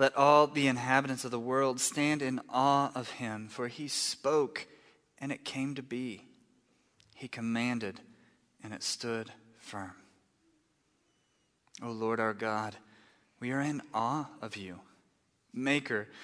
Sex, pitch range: male, 110-135 Hz